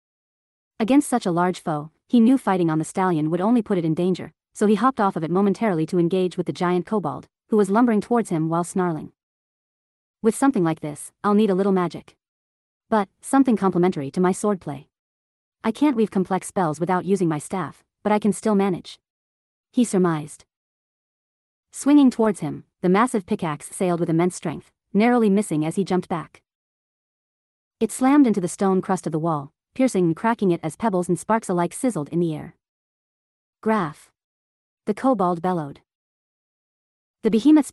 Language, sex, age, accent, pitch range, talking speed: English, female, 40-59, American, 165-215 Hz, 180 wpm